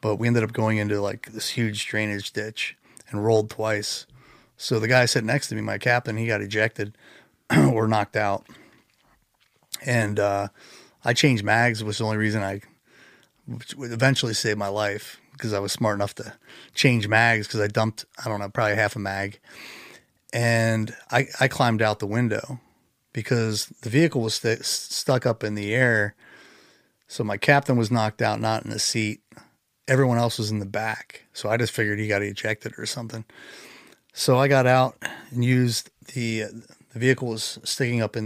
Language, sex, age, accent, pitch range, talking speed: English, male, 30-49, American, 105-120 Hz, 180 wpm